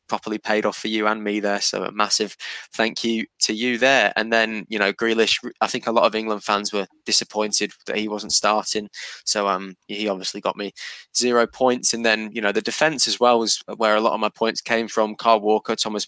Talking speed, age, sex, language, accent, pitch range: 230 wpm, 20-39, male, English, British, 105-115 Hz